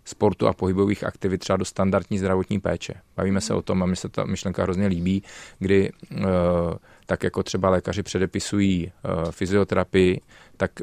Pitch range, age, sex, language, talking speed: 90-100 Hz, 30-49, male, Czech, 160 wpm